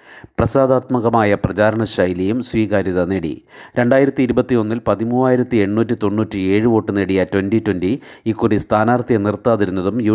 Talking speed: 120 wpm